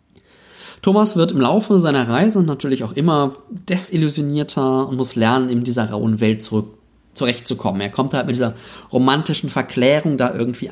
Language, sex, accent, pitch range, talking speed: German, male, German, 115-165 Hz, 155 wpm